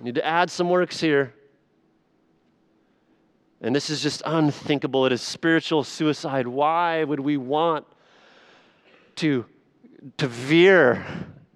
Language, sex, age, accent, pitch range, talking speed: English, male, 40-59, American, 130-175 Hz, 115 wpm